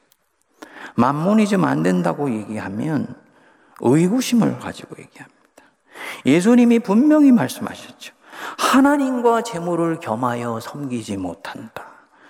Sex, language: male, Korean